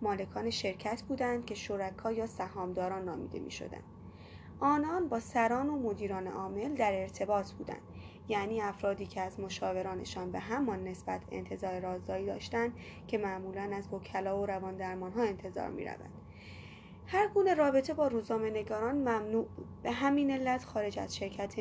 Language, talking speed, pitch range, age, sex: Persian, 145 wpm, 195-250 Hz, 20-39, female